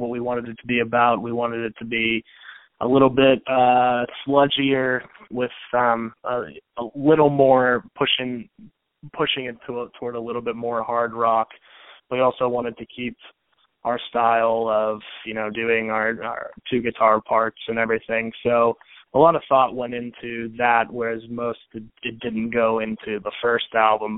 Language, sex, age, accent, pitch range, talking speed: English, male, 20-39, American, 110-125 Hz, 170 wpm